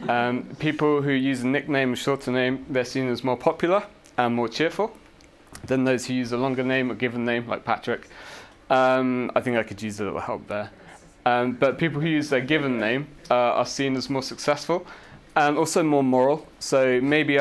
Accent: British